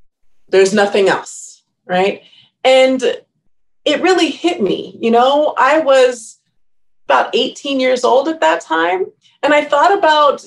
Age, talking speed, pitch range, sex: 30-49, 140 wpm, 205-305 Hz, female